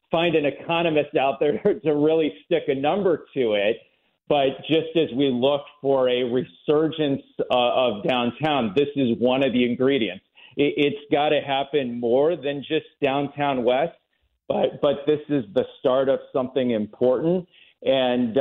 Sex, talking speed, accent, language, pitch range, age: male, 155 wpm, American, English, 125-145 Hz, 40-59